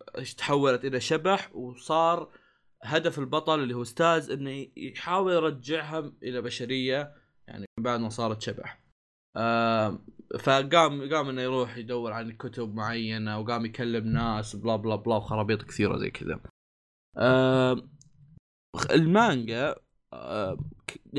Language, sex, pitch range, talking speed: Arabic, male, 120-155 Hz, 115 wpm